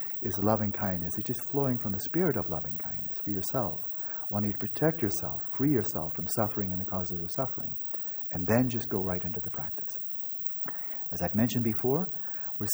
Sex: male